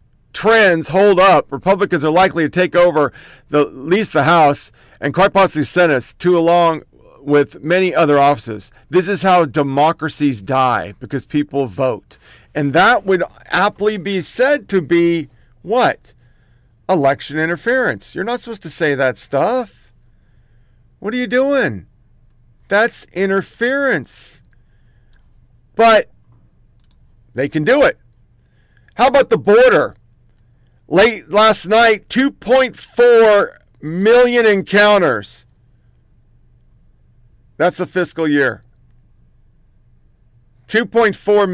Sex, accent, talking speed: male, American, 110 wpm